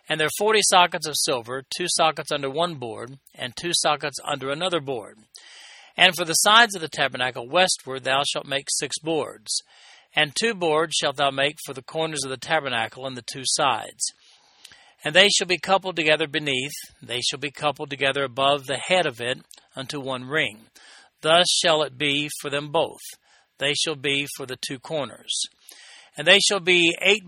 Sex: male